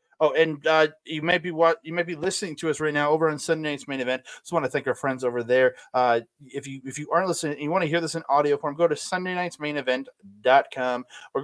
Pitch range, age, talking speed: 130-175 Hz, 20-39, 255 wpm